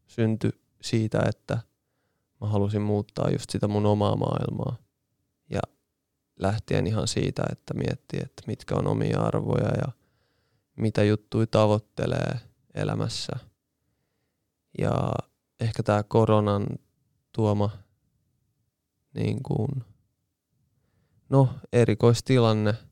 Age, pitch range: 20-39, 105-130 Hz